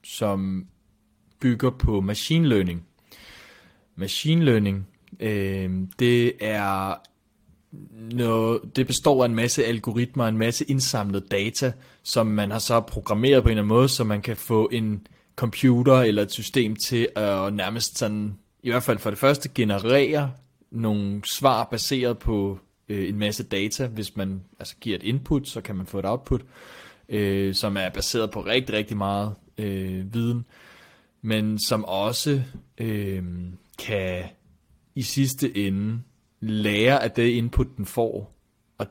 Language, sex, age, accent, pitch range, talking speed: Danish, male, 30-49, native, 100-120 Hz, 145 wpm